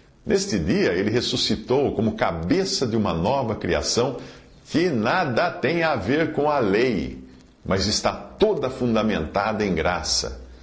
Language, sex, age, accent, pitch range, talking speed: Portuguese, male, 50-69, Brazilian, 95-145 Hz, 135 wpm